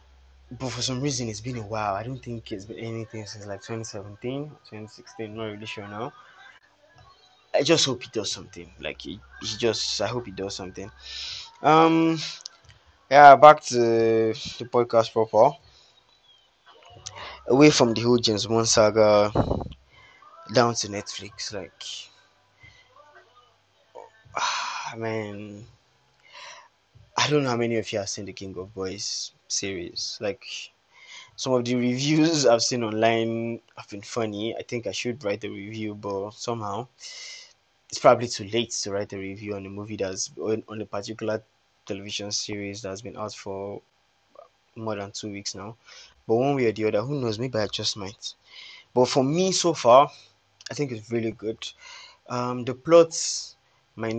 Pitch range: 105-120 Hz